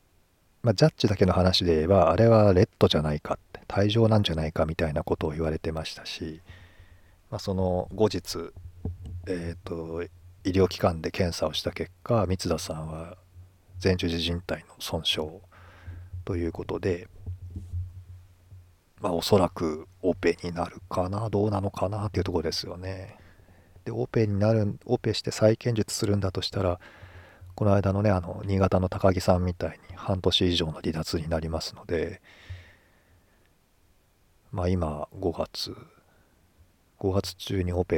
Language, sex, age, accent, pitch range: Japanese, male, 40-59, native, 85-100 Hz